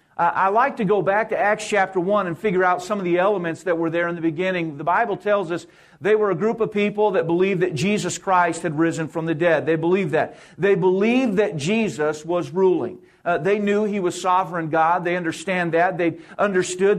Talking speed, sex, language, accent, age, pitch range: 225 wpm, male, English, American, 50-69, 175-215 Hz